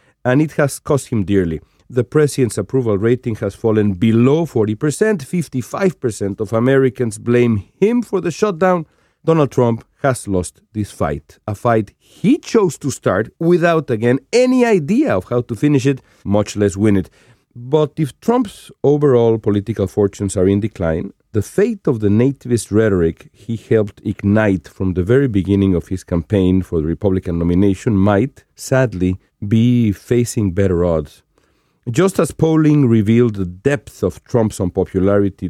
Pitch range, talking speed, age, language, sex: 100-145 Hz, 155 wpm, 40-59, English, male